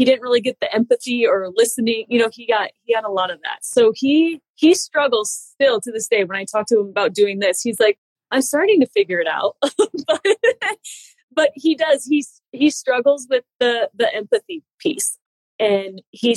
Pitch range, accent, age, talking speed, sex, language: 210-275 Hz, American, 20-39, 205 wpm, female, English